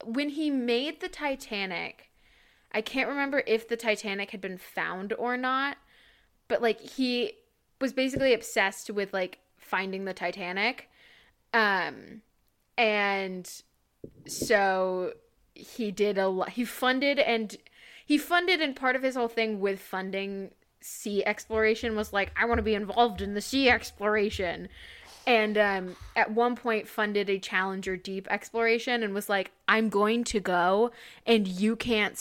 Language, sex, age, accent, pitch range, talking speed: English, female, 20-39, American, 200-255 Hz, 150 wpm